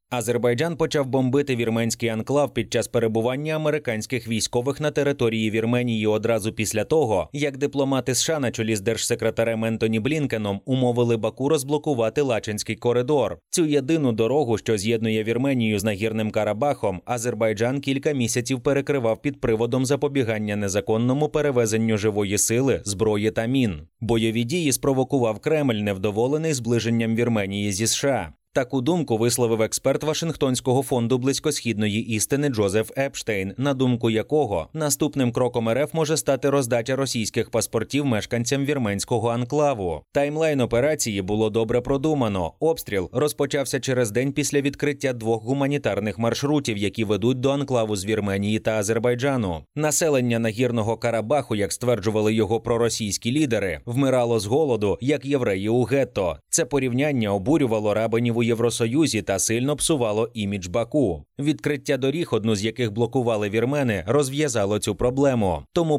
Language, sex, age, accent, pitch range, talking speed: Ukrainian, male, 30-49, native, 110-140 Hz, 130 wpm